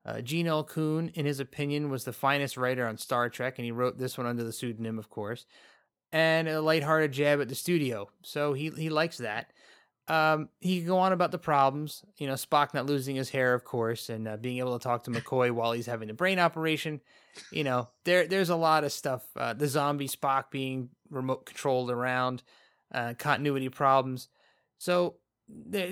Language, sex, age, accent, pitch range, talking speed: English, male, 30-49, American, 125-155 Hz, 205 wpm